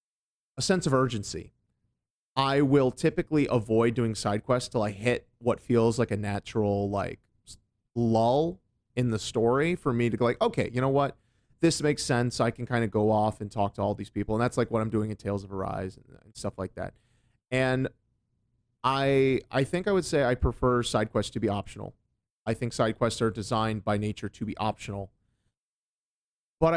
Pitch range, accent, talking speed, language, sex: 105-130 Hz, American, 195 wpm, English, male